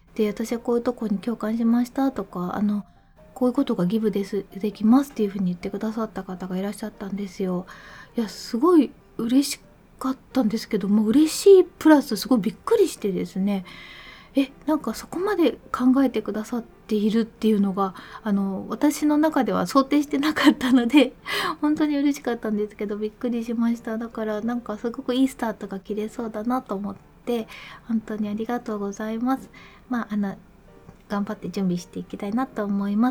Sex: female